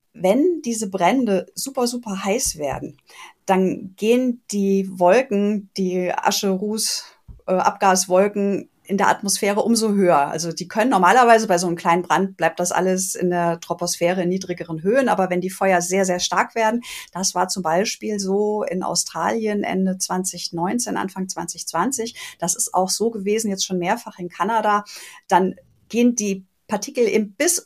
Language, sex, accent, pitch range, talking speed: German, female, German, 180-220 Hz, 160 wpm